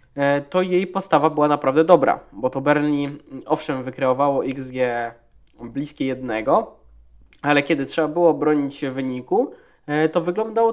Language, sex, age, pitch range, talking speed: Polish, male, 20-39, 125-155 Hz, 135 wpm